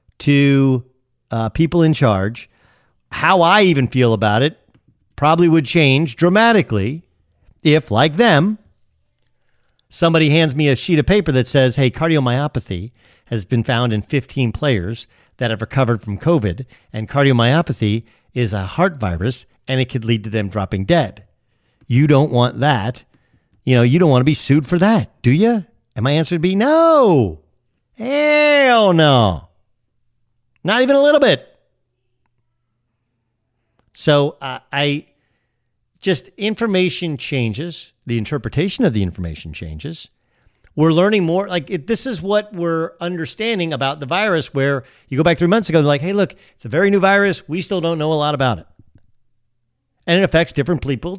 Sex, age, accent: male, 50-69, American